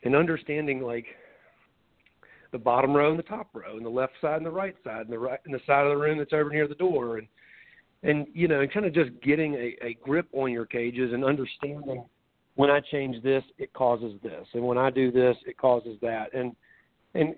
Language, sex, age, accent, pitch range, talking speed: English, male, 40-59, American, 120-145 Hz, 230 wpm